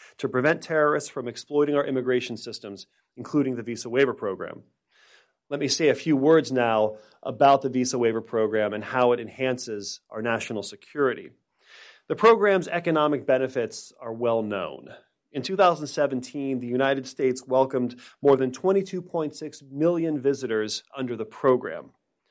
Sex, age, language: male, 40-59, English